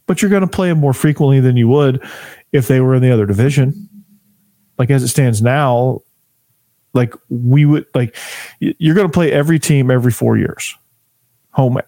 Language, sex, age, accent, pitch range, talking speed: English, male, 40-59, American, 120-145 Hz, 185 wpm